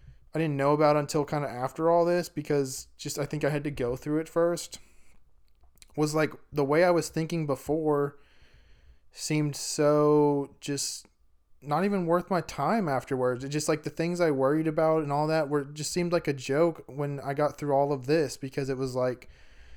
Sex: male